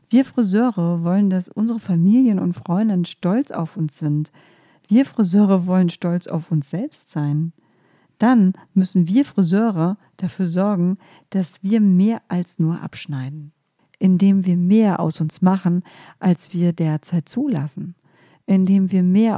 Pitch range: 170-210 Hz